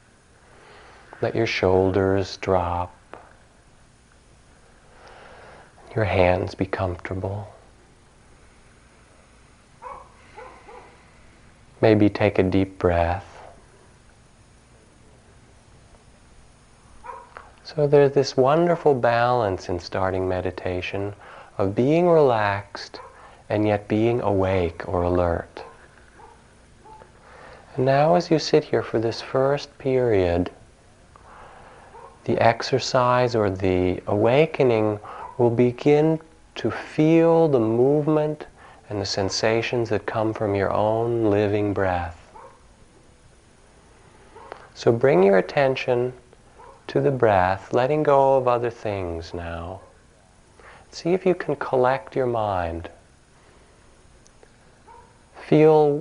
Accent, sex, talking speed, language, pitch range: American, male, 85 wpm, English, 95-130 Hz